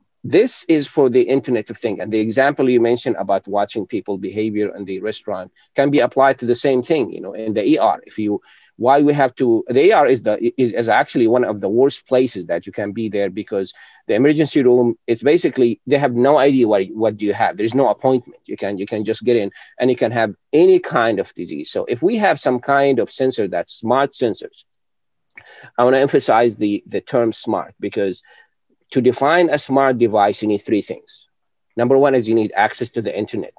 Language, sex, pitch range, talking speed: Spanish, male, 110-140 Hz, 225 wpm